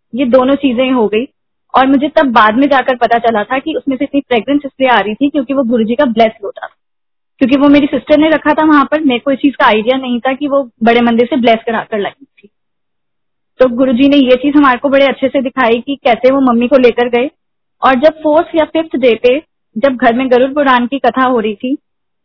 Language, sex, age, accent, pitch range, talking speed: Hindi, female, 20-39, native, 240-285 Hz, 245 wpm